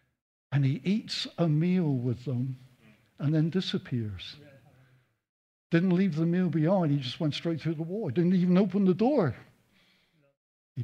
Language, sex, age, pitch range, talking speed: English, male, 60-79, 140-205 Hz, 155 wpm